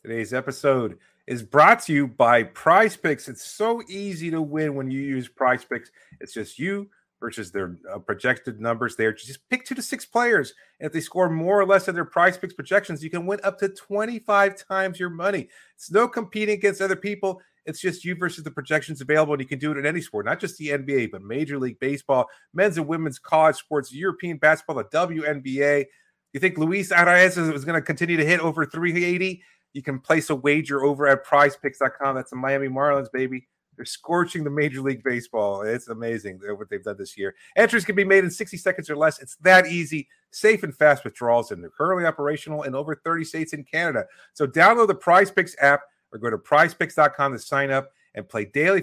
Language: English